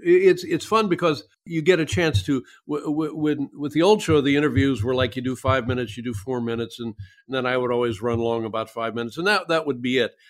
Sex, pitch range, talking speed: male, 115-145 Hz, 260 wpm